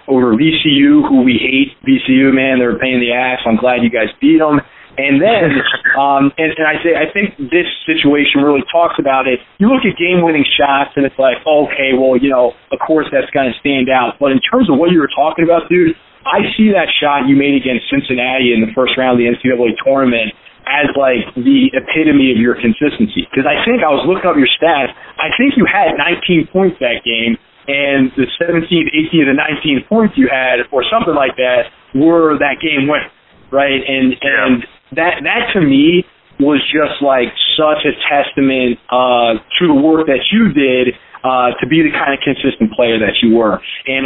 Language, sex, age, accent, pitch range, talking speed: English, male, 30-49, American, 130-170 Hz, 205 wpm